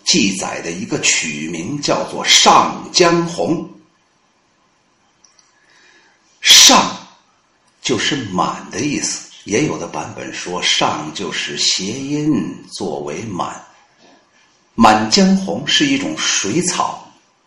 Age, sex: 50-69, male